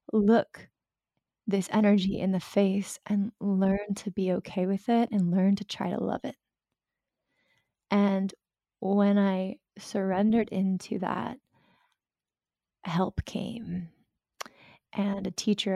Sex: female